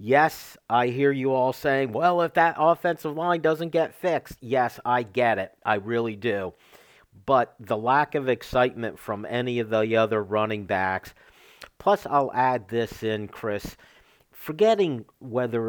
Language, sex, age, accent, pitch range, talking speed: English, male, 50-69, American, 115-140 Hz, 155 wpm